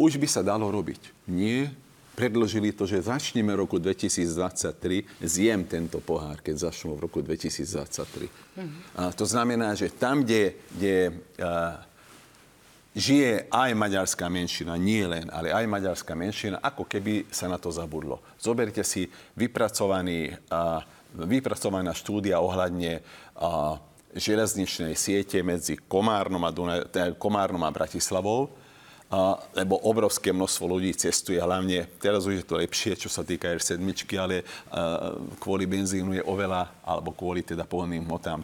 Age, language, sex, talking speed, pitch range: 50-69, Slovak, male, 135 wpm, 85-105 Hz